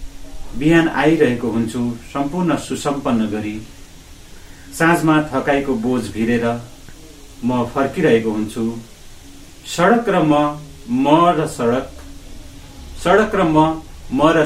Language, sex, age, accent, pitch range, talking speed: English, male, 40-59, Indian, 115-155 Hz, 75 wpm